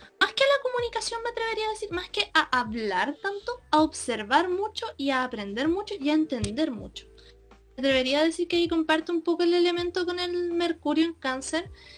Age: 20-39